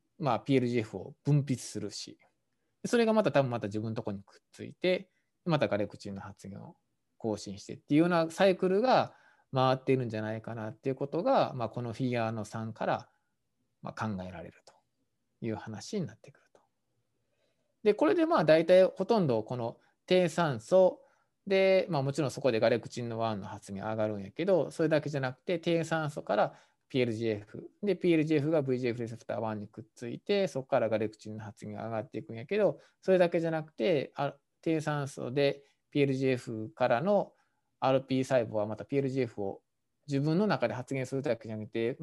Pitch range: 110-160 Hz